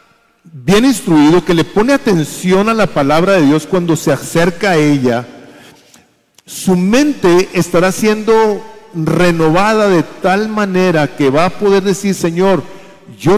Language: English